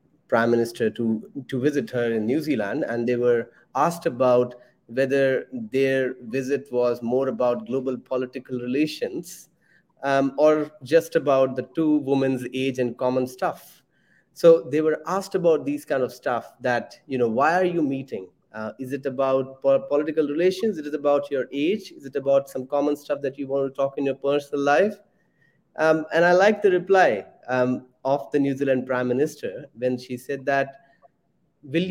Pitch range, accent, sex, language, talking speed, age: 130-155 Hz, Indian, male, English, 175 wpm, 30-49